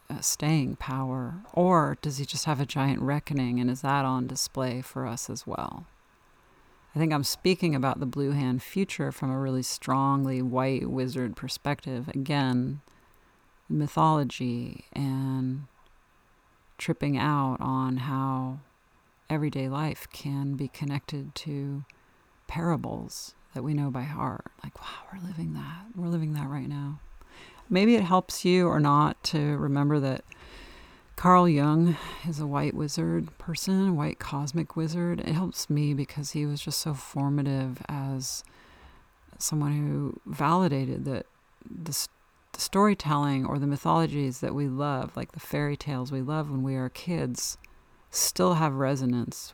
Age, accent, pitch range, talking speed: 40-59, American, 130-155 Hz, 145 wpm